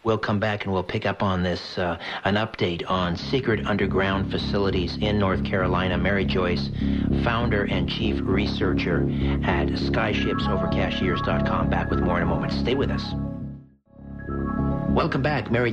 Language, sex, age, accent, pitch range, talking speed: English, male, 60-79, American, 85-105 Hz, 150 wpm